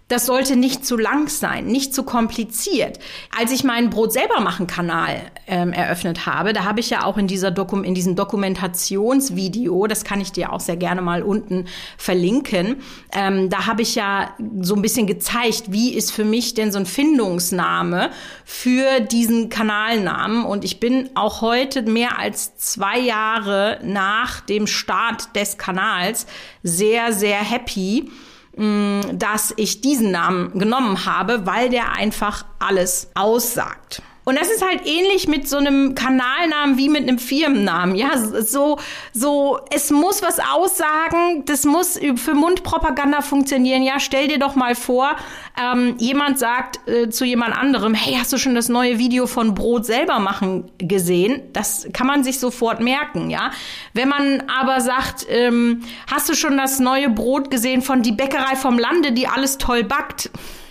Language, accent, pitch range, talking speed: German, German, 205-270 Hz, 160 wpm